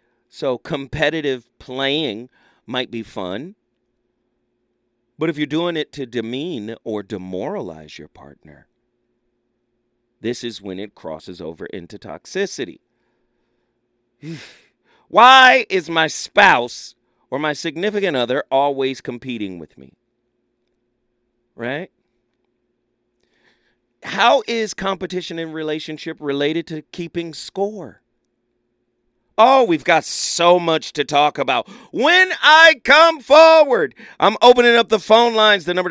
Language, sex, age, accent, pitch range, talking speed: English, male, 40-59, American, 120-185 Hz, 110 wpm